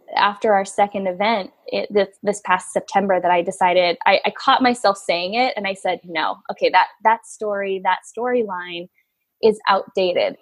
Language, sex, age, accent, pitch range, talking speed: English, female, 10-29, American, 195-230 Hz, 165 wpm